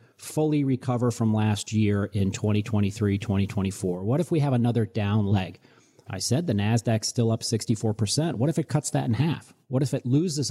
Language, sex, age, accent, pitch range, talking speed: English, male, 40-59, American, 105-130 Hz, 190 wpm